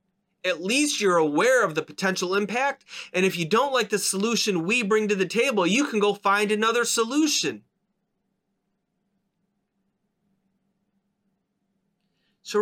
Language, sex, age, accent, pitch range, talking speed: English, male, 30-49, American, 180-205 Hz, 130 wpm